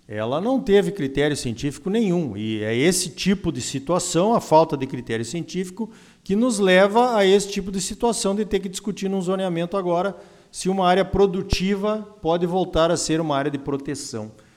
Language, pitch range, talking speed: Portuguese, 135-195 Hz, 180 wpm